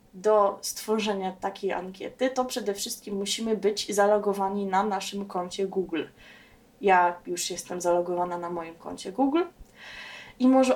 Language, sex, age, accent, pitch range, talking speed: Polish, female, 20-39, native, 195-235 Hz, 135 wpm